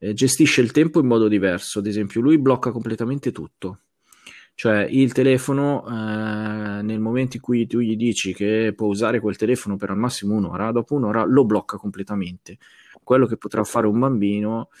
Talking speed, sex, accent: 175 wpm, male, native